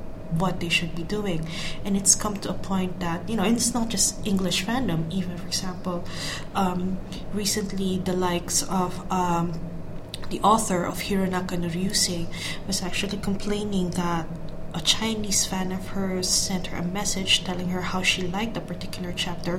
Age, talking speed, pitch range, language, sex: 20-39, 170 wpm, 170-195 Hz, English, female